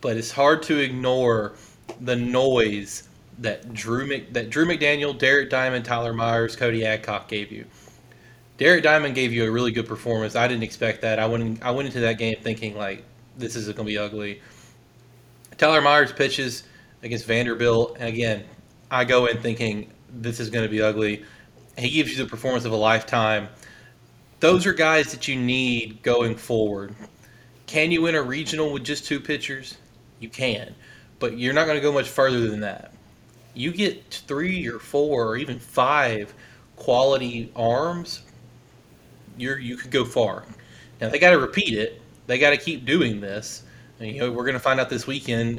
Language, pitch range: English, 110-130 Hz